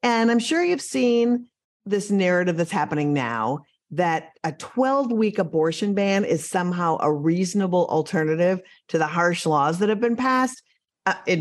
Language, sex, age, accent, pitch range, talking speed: English, female, 50-69, American, 170-240 Hz, 160 wpm